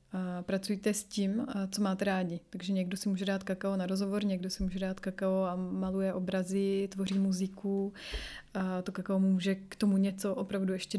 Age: 30-49